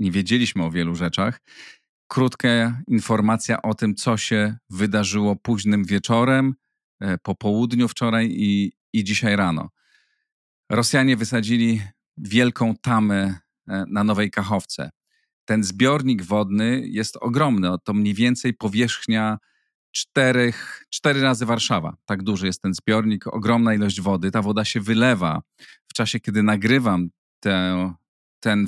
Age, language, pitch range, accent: 40-59, Polish, 100-115 Hz, native